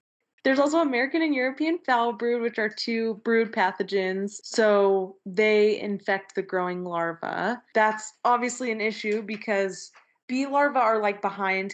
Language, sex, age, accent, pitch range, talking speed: English, female, 20-39, American, 190-225 Hz, 145 wpm